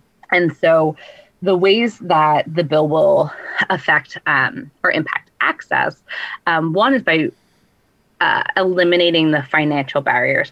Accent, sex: American, female